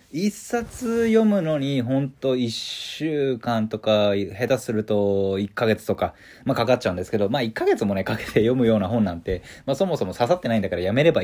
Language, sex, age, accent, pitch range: Japanese, male, 20-39, native, 100-145 Hz